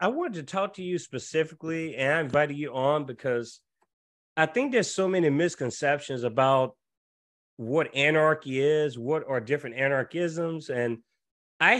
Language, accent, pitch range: English, American, 135-170 Hz